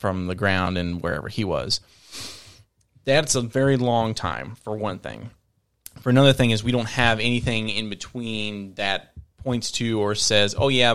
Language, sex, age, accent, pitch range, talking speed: English, male, 30-49, American, 100-125 Hz, 175 wpm